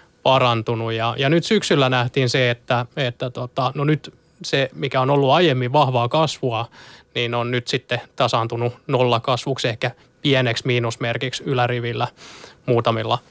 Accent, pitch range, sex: native, 125-140 Hz, male